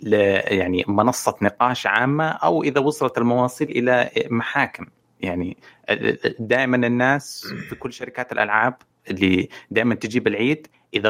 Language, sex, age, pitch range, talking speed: Arabic, male, 30-49, 105-140 Hz, 125 wpm